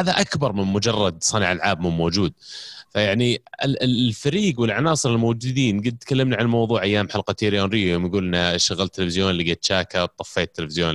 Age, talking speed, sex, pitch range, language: 30-49, 145 wpm, male, 90-125 Hz, Arabic